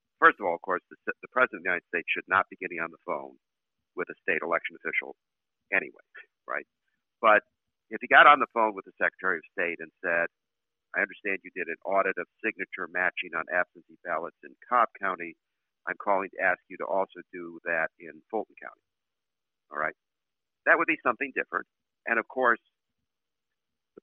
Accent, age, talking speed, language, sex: American, 50-69, 190 wpm, English, male